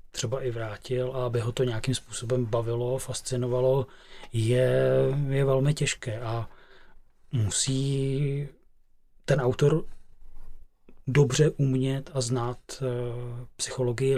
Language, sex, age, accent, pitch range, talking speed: Czech, male, 30-49, native, 125-140 Hz, 100 wpm